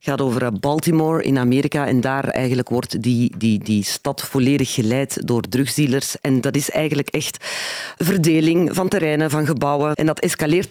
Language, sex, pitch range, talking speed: Dutch, female, 130-165 Hz, 175 wpm